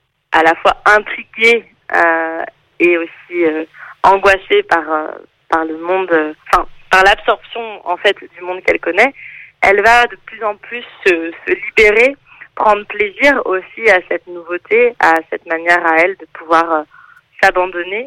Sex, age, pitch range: female, 30-49, 175-230 Hz